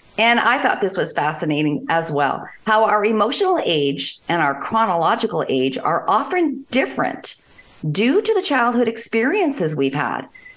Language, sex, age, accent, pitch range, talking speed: English, female, 50-69, American, 155-225 Hz, 150 wpm